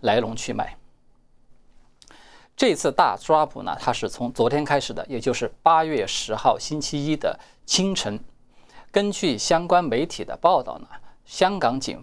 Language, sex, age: Chinese, male, 20-39